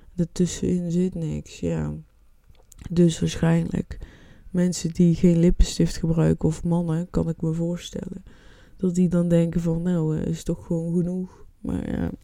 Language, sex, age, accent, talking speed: Dutch, female, 20-39, Dutch, 145 wpm